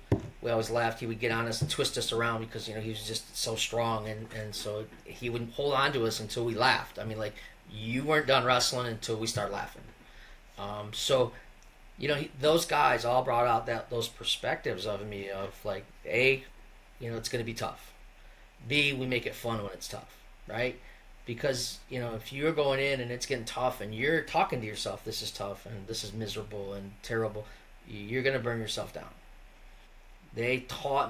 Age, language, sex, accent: 30-49, English, male, American